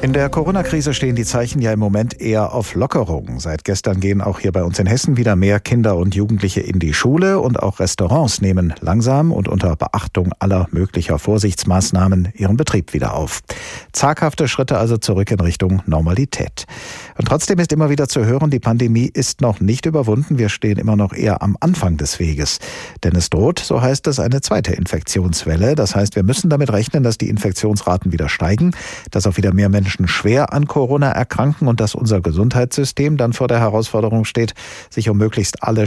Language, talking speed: German, 190 wpm